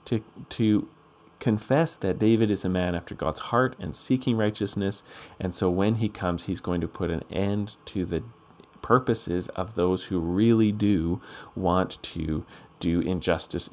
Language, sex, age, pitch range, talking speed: English, male, 40-59, 90-120 Hz, 155 wpm